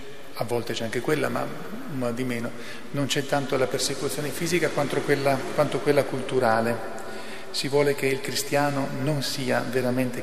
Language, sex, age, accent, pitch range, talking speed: Italian, male, 40-59, native, 125-140 Hz, 160 wpm